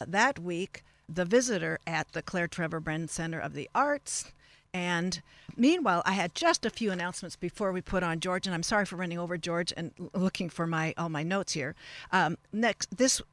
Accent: American